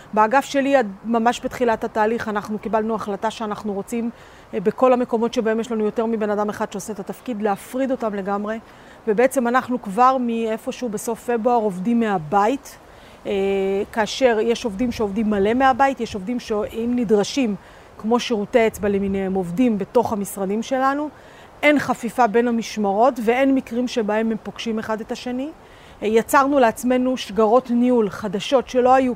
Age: 40-59